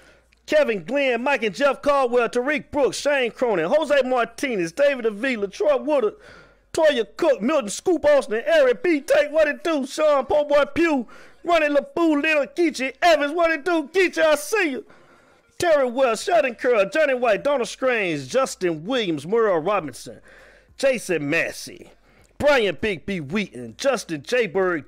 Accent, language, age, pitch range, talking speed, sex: American, English, 40-59, 235-295 Hz, 150 wpm, male